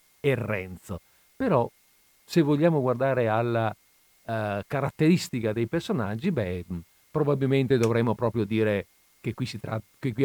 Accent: native